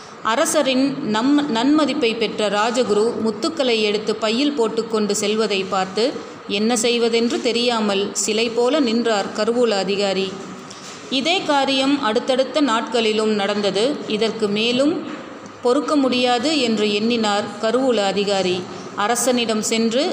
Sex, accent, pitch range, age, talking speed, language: female, native, 210-250 Hz, 30-49, 100 wpm, Tamil